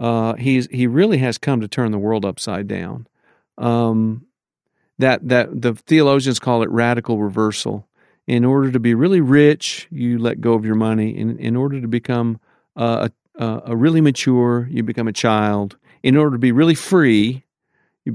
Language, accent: English, American